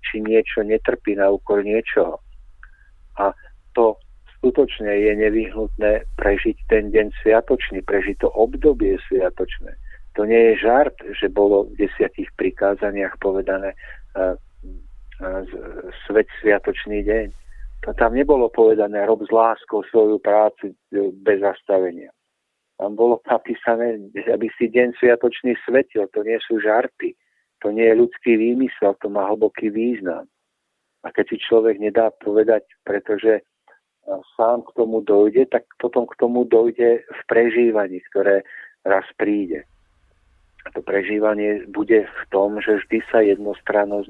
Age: 50-69